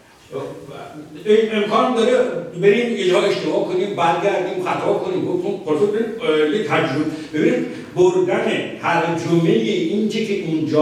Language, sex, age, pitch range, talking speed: Persian, male, 60-79, 190-280 Hz, 115 wpm